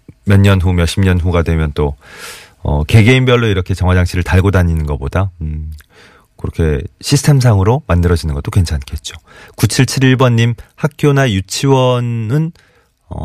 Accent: native